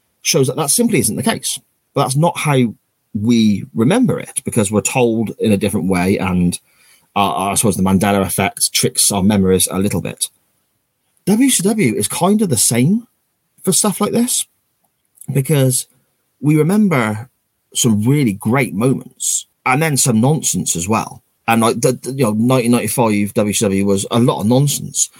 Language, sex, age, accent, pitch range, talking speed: English, male, 30-49, British, 100-140 Hz, 160 wpm